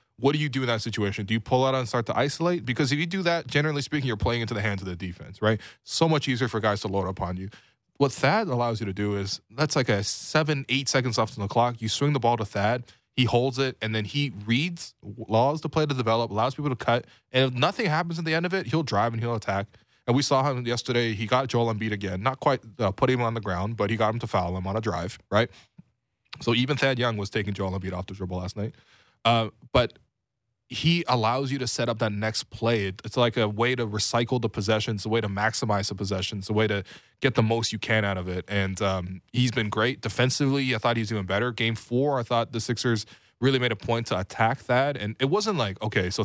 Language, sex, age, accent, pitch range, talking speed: English, male, 20-39, American, 105-130 Hz, 260 wpm